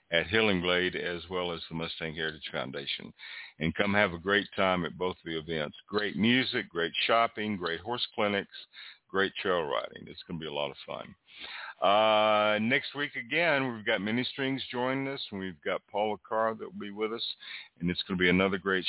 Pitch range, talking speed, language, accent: 90-110 Hz, 205 wpm, English, American